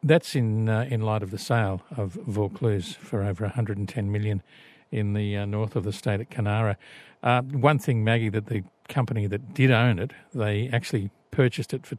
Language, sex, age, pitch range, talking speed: English, male, 50-69, 105-125 Hz, 195 wpm